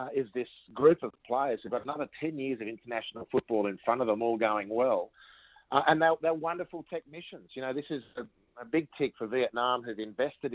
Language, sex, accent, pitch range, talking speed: English, male, Australian, 110-130 Hz, 220 wpm